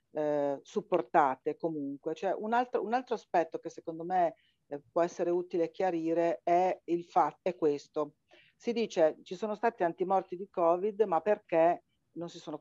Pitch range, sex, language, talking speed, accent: 155-190 Hz, female, Italian, 165 wpm, native